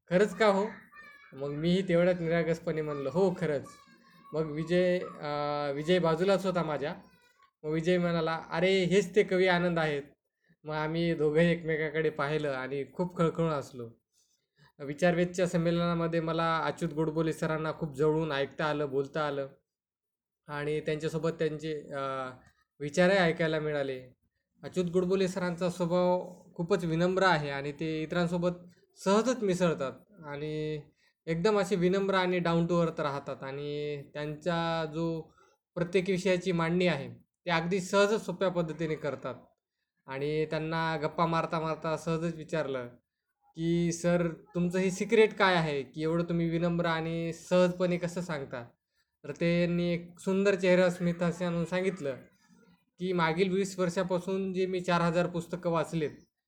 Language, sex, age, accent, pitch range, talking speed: Marathi, male, 20-39, native, 155-185 Hz, 105 wpm